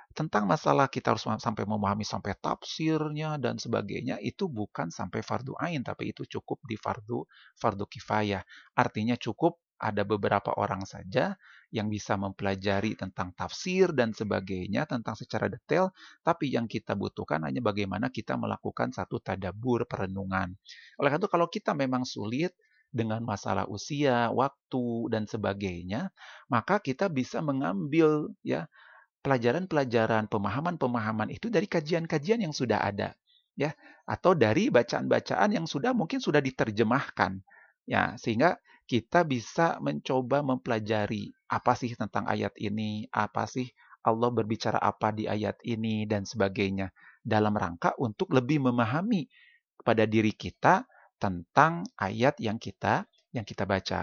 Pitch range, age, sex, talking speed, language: 105-140 Hz, 30-49, male, 135 wpm, Indonesian